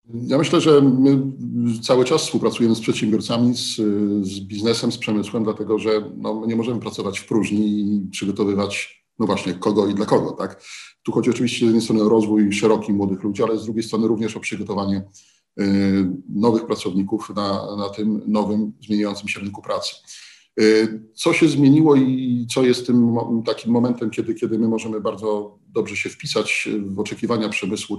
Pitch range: 105-120 Hz